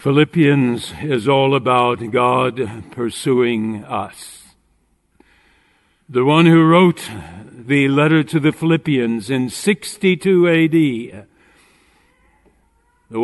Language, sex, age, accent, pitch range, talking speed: English, male, 60-79, American, 135-180 Hz, 90 wpm